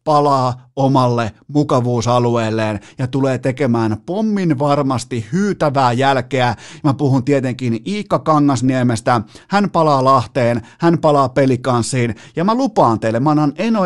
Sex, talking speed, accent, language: male, 120 wpm, native, Finnish